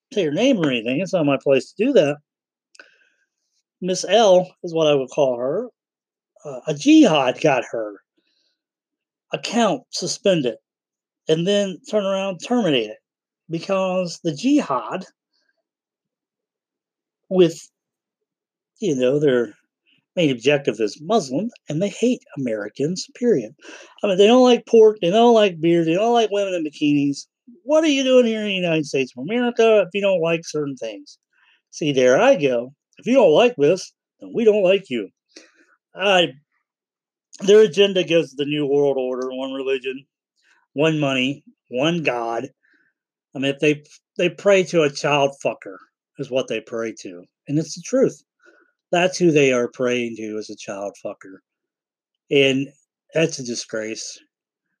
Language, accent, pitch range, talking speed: English, American, 140-230 Hz, 155 wpm